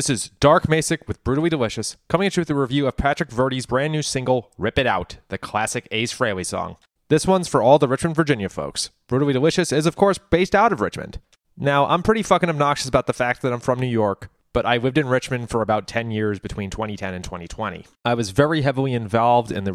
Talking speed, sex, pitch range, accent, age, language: 235 wpm, male, 105-145 Hz, American, 30-49, English